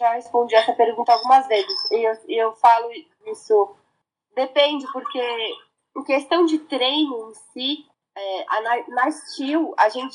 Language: Portuguese